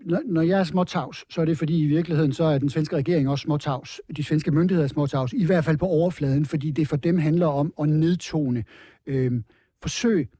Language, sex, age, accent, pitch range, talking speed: Danish, male, 60-79, native, 135-165 Hz, 210 wpm